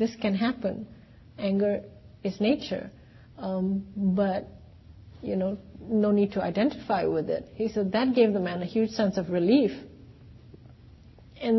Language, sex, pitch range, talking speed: English, female, 170-215 Hz, 145 wpm